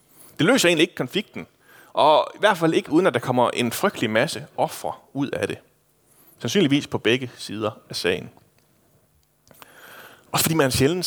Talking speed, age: 170 wpm, 30-49